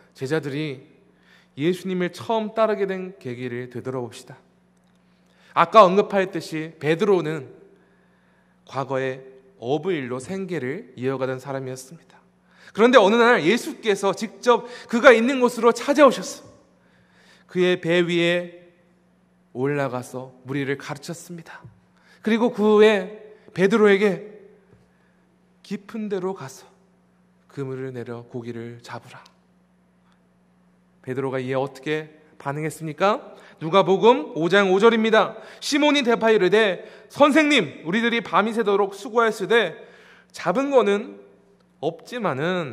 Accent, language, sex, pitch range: native, Korean, male, 130-200 Hz